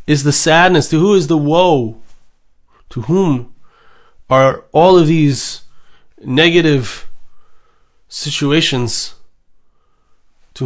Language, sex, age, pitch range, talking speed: English, male, 30-49, 120-155 Hz, 95 wpm